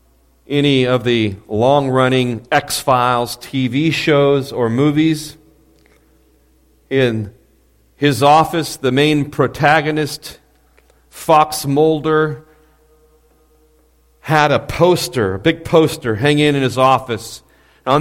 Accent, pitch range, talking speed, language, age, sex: American, 110-165 Hz, 100 wpm, English, 40-59, male